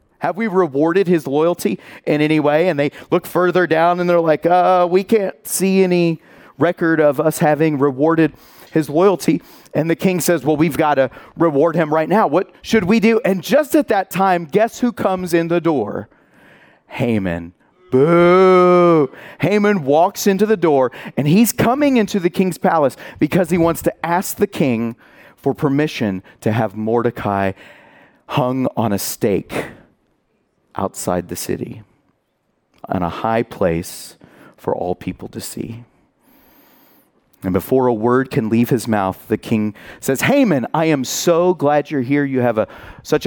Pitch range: 120-180 Hz